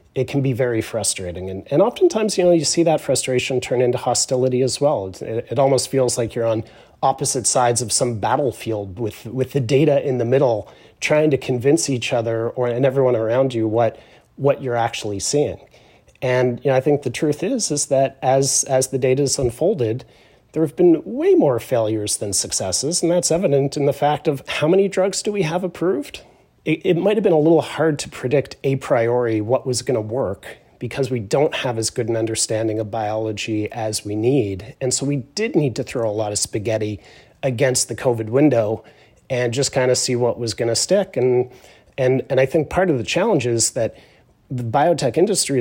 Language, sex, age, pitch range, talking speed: English, male, 30-49, 115-145 Hz, 210 wpm